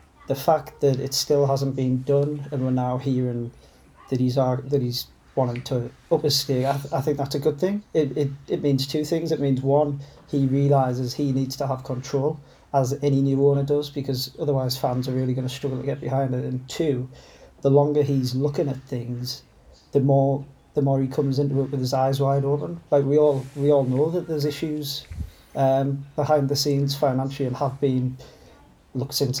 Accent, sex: British, male